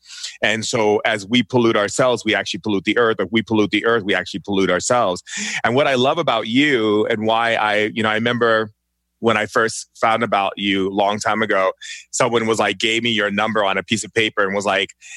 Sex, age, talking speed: male, 30-49, 230 wpm